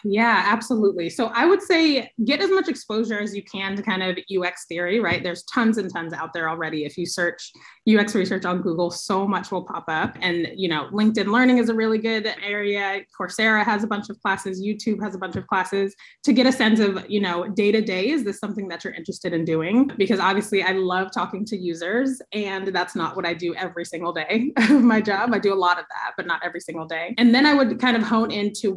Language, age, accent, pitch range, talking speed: English, 20-39, American, 180-220 Hz, 240 wpm